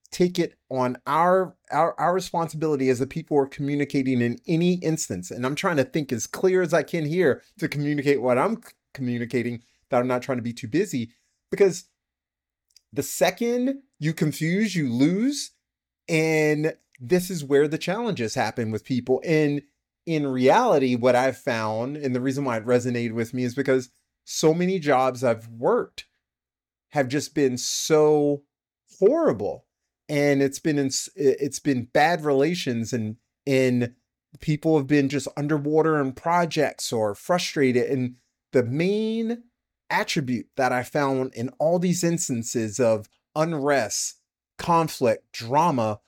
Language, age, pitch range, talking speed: English, 30-49, 125-155 Hz, 150 wpm